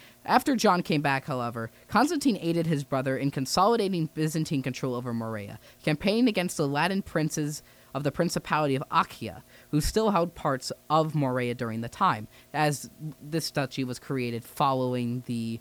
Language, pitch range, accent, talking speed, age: English, 125-175 Hz, American, 160 wpm, 20-39